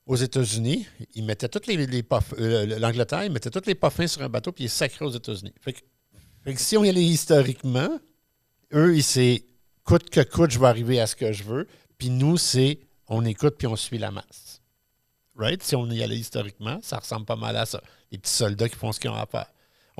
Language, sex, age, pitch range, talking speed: French, male, 60-79, 105-130 Hz, 235 wpm